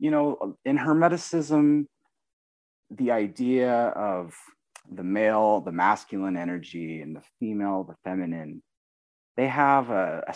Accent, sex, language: American, male, English